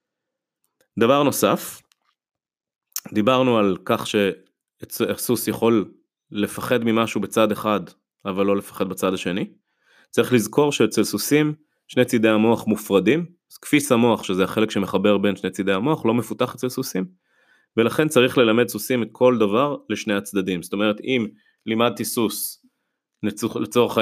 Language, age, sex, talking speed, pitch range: Hebrew, 20-39, male, 120 wpm, 105-145 Hz